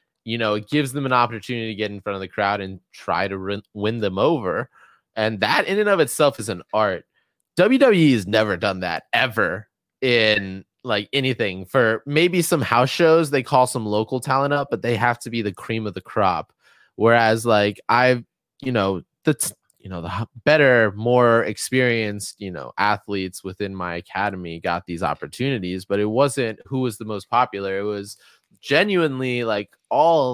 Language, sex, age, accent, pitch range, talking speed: English, male, 20-39, American, 95-120 Hz, 190 wpm